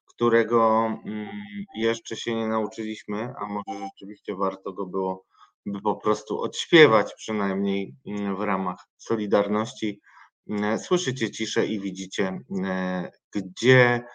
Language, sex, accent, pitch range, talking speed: Polish, male, native, 95-120 Hz, 100 wpm